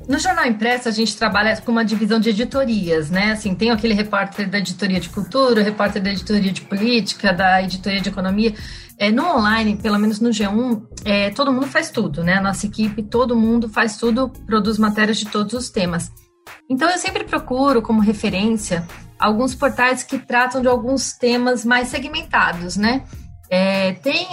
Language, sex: Portuguese, female